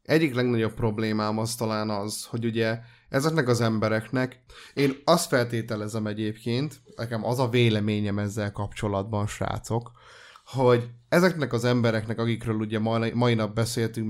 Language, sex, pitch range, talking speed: Hungarian, male, 110-130 Hz, 130 wpm